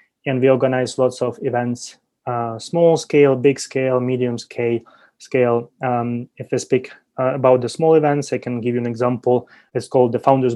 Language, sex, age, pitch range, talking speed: English, male, 20-39, 125-145 Hz, 200 wpm